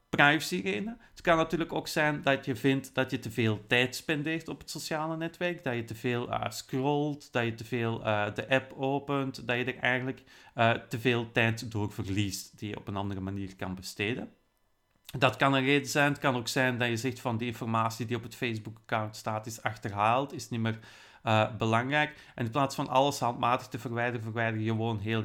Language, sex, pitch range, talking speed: Dutch, male, 115-145 Hz, 215 wpm